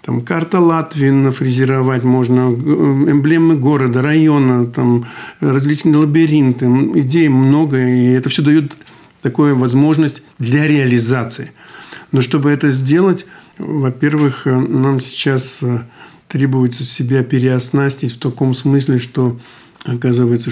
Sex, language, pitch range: male, Russian, 125-145 Hz